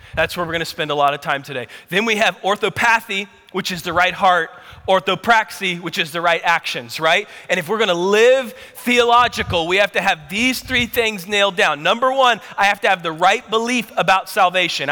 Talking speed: 215 wpm